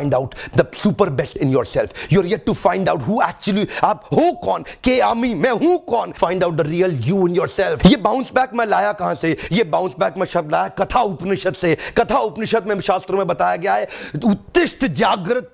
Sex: male